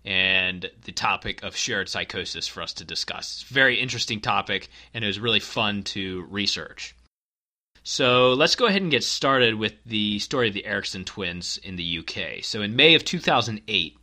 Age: 30-49